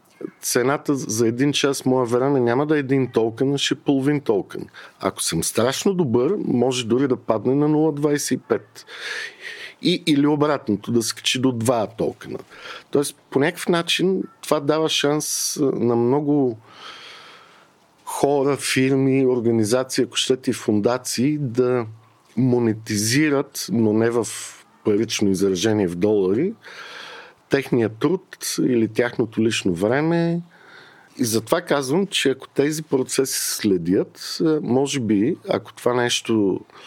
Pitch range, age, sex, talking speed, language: 110-140 Hz, 50-69, male, 125 wpm, Bulgarian